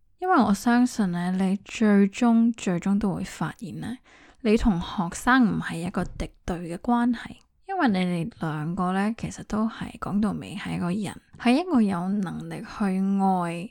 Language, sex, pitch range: Chinese, female, 185-235 Hz